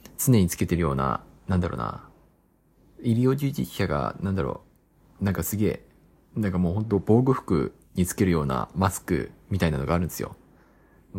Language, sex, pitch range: Japanese, male, 85-130 Hz